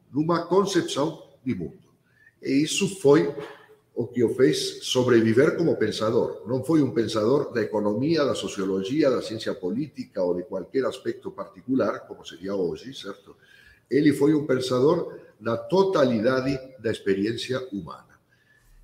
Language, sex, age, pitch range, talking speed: Portuguese, male, 50-69, 110-170 Hz, 135 wpm